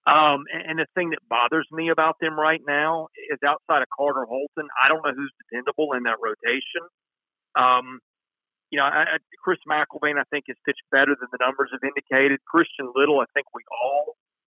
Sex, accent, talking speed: male, American, 185 wpm